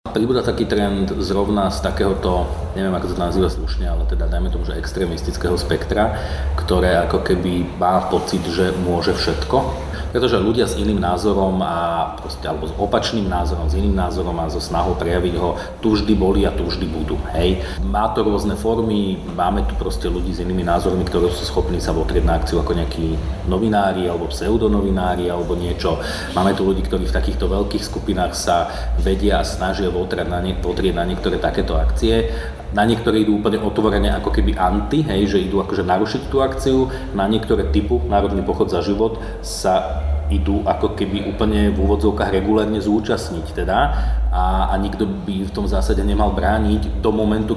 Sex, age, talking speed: male, 30-49, 175 wpm